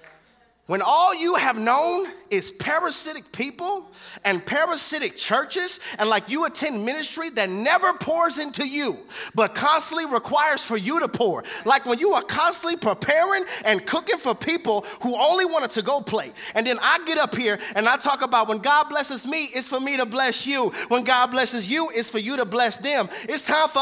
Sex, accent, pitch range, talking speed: male, American, 215-310 Hz, 195 wpm